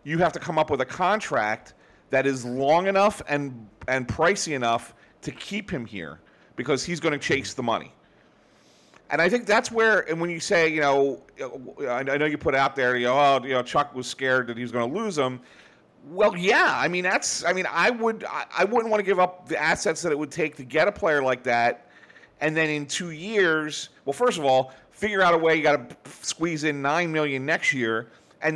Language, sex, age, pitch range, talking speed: English, male, 40-59, 135-175 Hz, 230 wpm